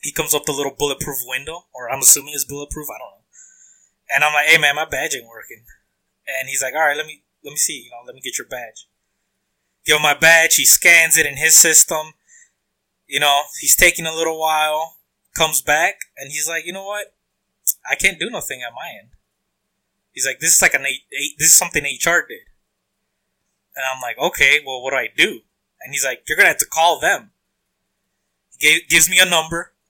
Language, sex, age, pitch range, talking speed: English, male, 20-39, 145-175 Hz, 220 wpm